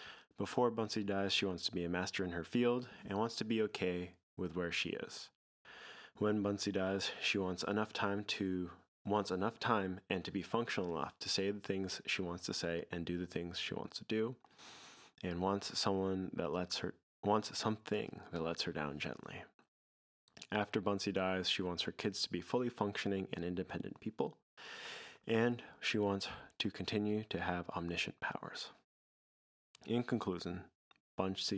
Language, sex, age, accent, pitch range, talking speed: English, male, 20-39, American, 90-105 Hz, 175 wpm